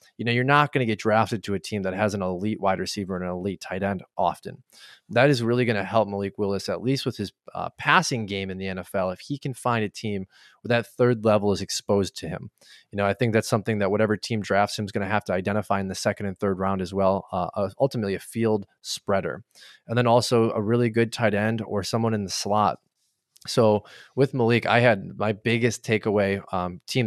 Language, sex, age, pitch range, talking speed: English, male, 20-39, 100-115 Hz, 240 wpm